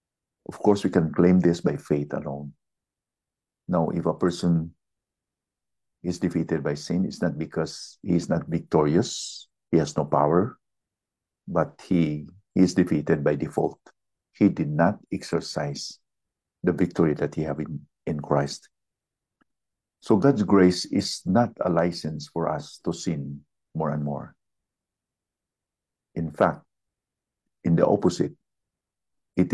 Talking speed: 135 wpm